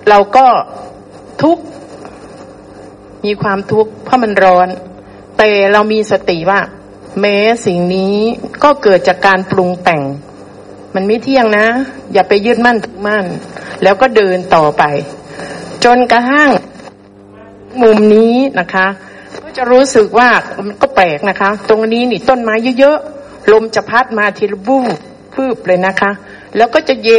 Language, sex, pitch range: Thai, female, 190-250 Hz